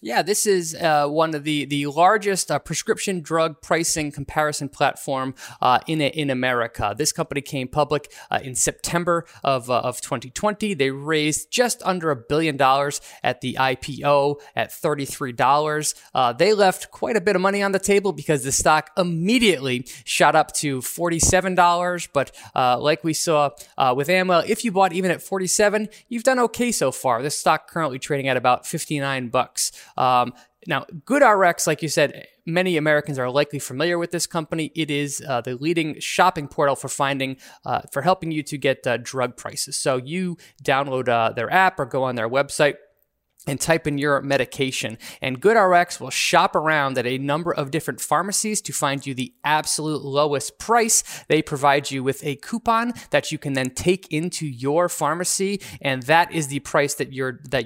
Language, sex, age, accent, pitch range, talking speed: English, male, 20-39, American, 135-175 Hz, 185 wpm